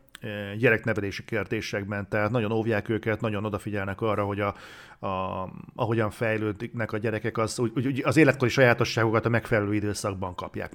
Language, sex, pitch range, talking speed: Hungarian, male, 110-130 Hz, 135 wpm